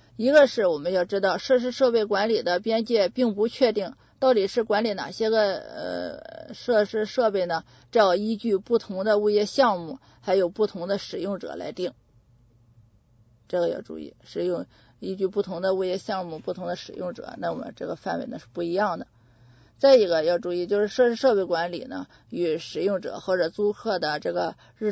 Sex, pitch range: female, 175-225 Hz